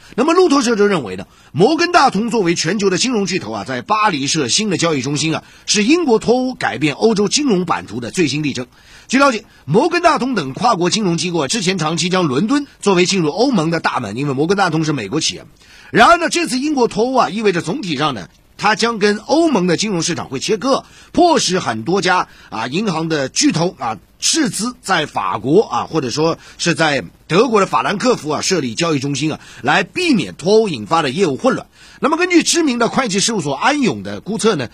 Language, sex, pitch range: Chinese, male, 160-235 Hz